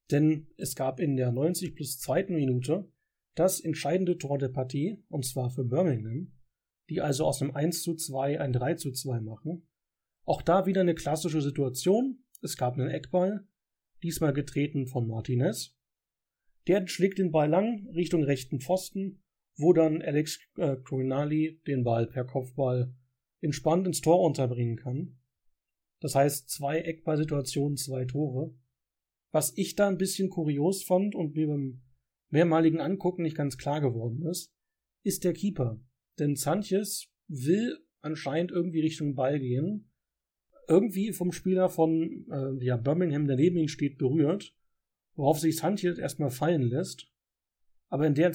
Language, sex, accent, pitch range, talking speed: German, male, German, 130-175 Hz, 150 wpm